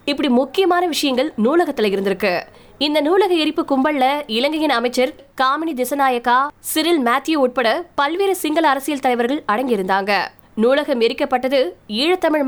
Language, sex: Tamil, female